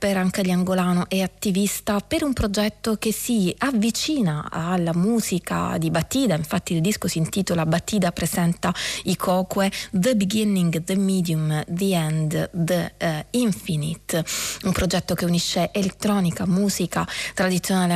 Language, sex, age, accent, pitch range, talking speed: Italian, female, 30-49, native, 175-200 Hz, 135 wpm